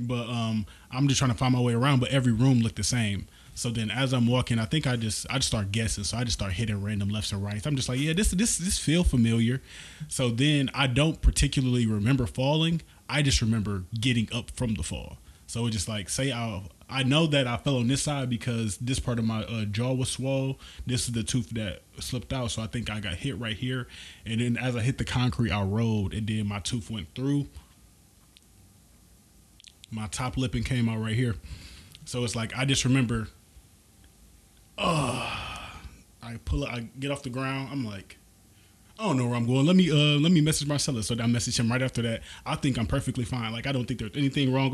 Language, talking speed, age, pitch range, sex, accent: English, 230 wpm, 20-39, 110-135 Hz, male, American